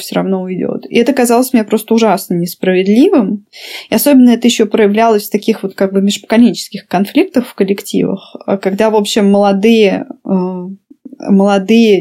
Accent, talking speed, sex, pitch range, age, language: native, 145 wpm, female, 190-230 Hz, 20-39, Russian